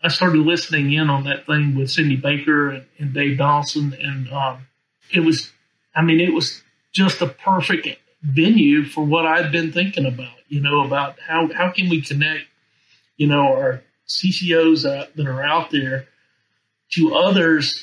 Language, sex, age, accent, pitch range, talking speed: English, male, 50-69, American, 140-165 Hz, 170 wpm